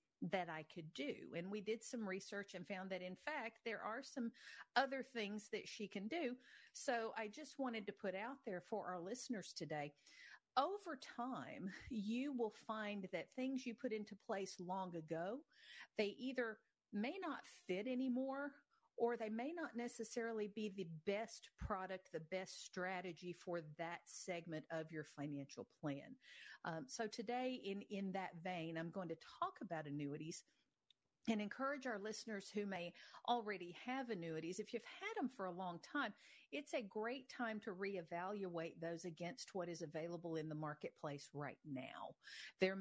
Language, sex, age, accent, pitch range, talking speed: English, female, 50-69, American, 175-235 Hz, 170 wpm